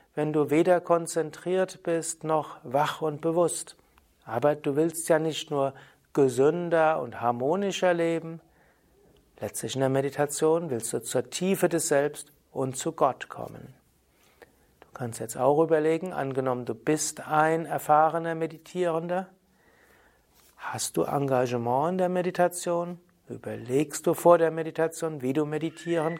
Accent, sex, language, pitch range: German, male, German, 140-175 Hz